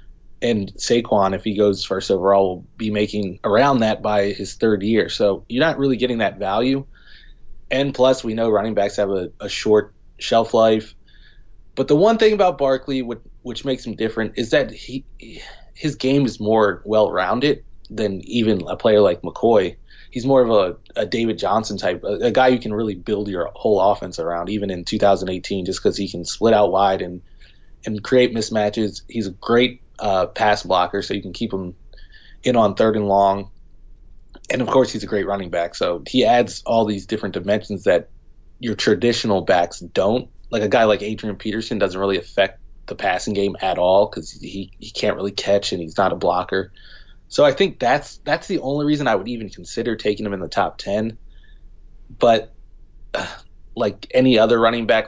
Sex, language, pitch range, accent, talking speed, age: male, English, 100-115 Hz, American, 195 wpm, 20-39